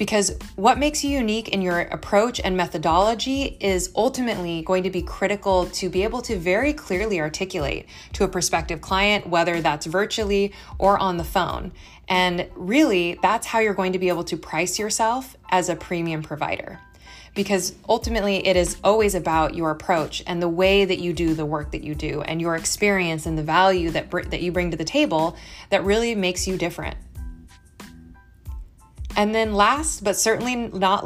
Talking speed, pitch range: 180 wpm, 170-210 Hz